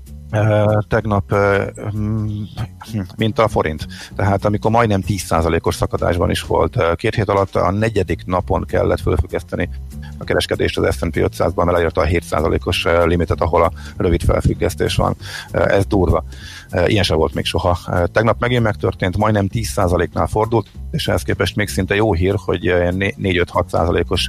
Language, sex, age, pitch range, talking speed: Hungarian, male, 50-69, 85-105 Hz, 150 wpm